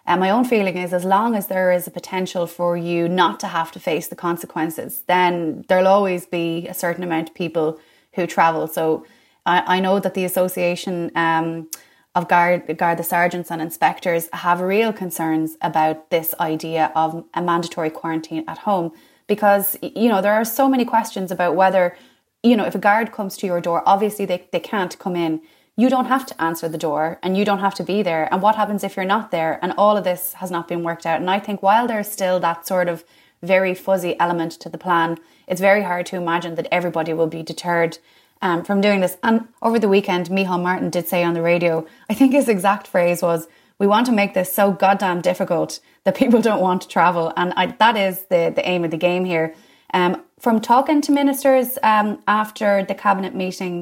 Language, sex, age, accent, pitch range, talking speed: English, female, 20-39, Irish, 170-200 Hz, 215 wpm